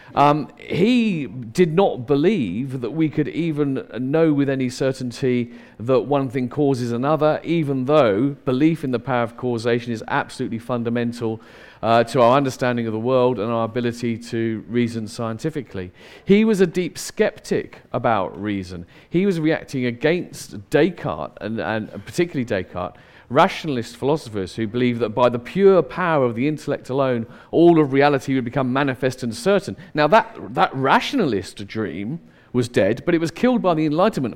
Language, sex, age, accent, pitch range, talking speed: English, male, 40-59, British, 120-160 Hz, 160 wpm